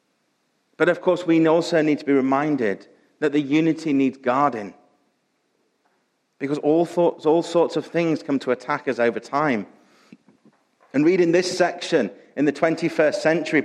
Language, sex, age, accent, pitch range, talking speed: English, male, 40-59, British, 145-175 Hz, 150 wpm